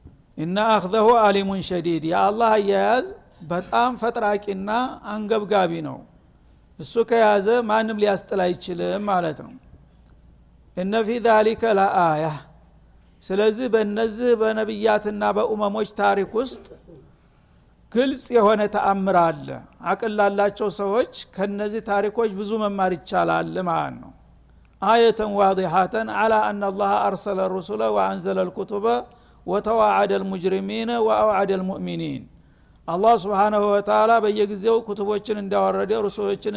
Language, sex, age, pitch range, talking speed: Amharic, male, 60-79, 190-225 Hz, 85 wpm